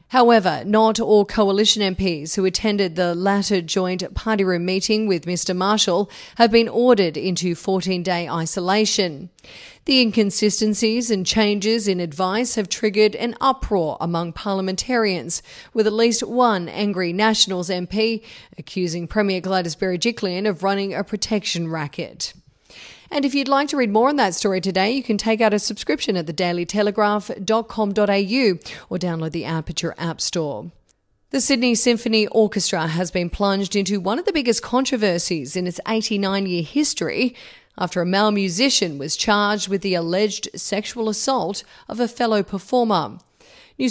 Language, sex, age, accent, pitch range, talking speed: English, female, 40-59, Australian, 180-220 Hz, 150 wpm